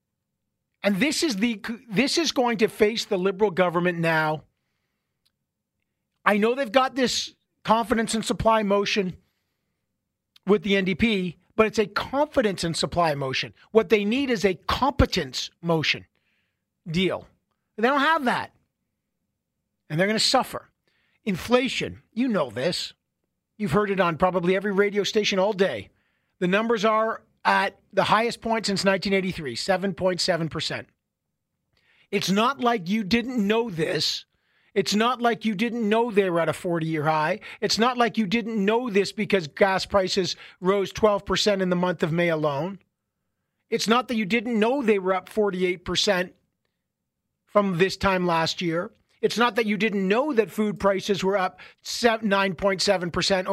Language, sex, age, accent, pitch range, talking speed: English, male, 50-69, American, 185-225 Hz, 155 wpm